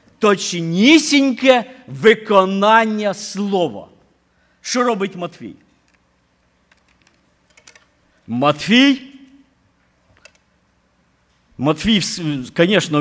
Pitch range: 145-220 Hz